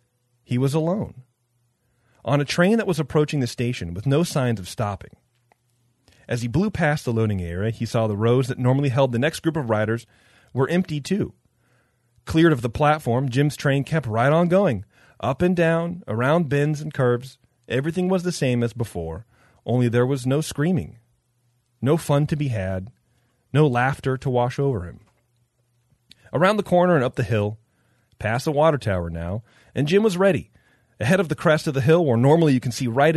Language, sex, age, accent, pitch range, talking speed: English, male, 30-49, American, 120-155 Hz, 190 wpm